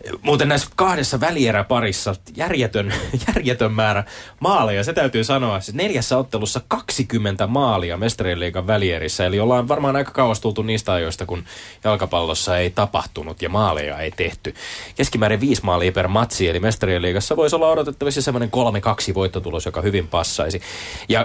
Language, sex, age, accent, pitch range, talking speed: Finnish, male, 20-39, native, 90-115 Hz, 140 wpm